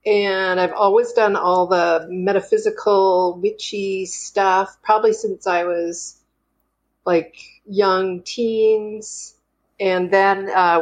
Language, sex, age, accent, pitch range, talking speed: English, female, 40-59, American, 175-245 Hz, 105 wpm